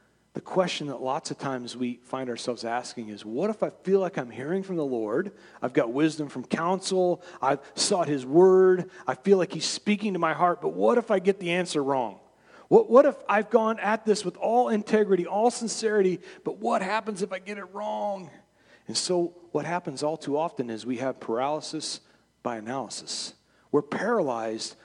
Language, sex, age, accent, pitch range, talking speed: English, male, 40-59, American, 135-200 Hz, 195 wpm